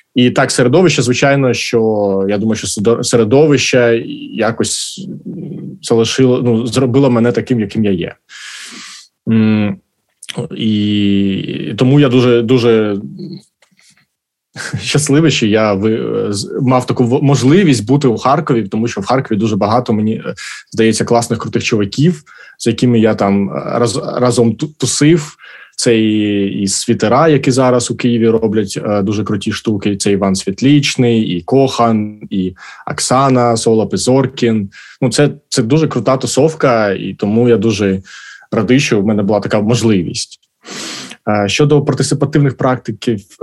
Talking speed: 125 wpm